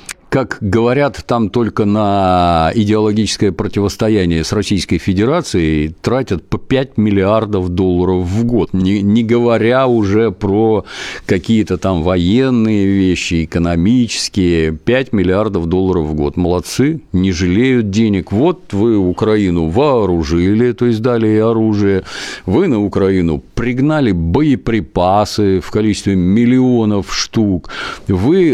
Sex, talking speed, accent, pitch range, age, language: male, 115 wpm, native, 90-115 Hz, 50-69, Russian